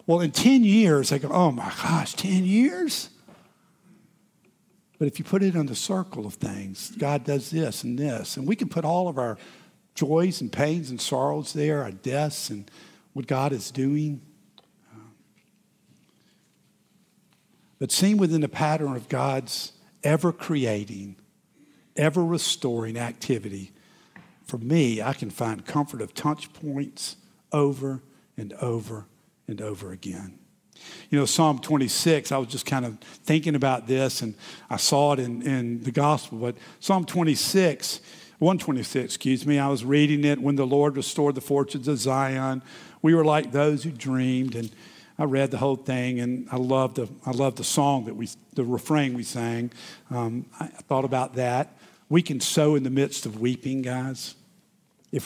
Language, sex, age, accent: English, male, 50-69, American